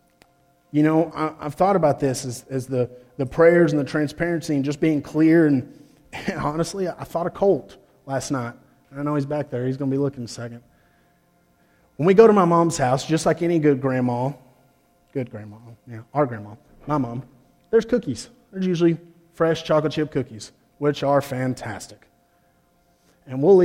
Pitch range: 135-160 Hz